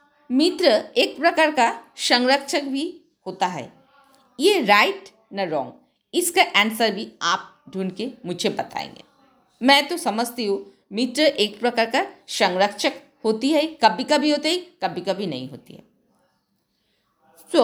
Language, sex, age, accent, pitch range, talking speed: Hindi, female, 50-69, native, 220-305 Hz, 140 wpm